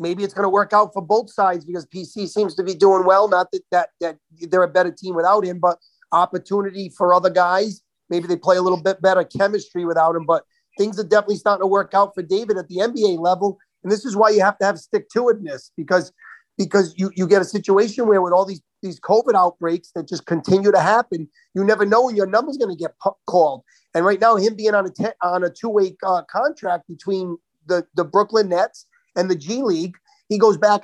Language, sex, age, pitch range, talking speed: English, male, 30-49, 180-215 Hz, 235 wpm